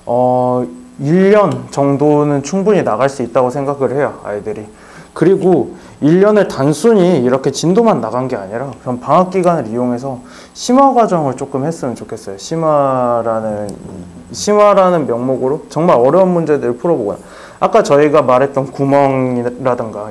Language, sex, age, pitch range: Korean, male, 20-39, 130-205 Hz